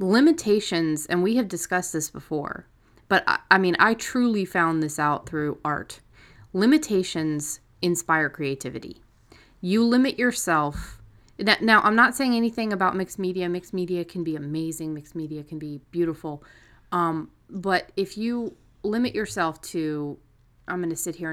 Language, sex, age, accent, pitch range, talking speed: English, female, 30-49, American, 150-195 Hz, 155 wpm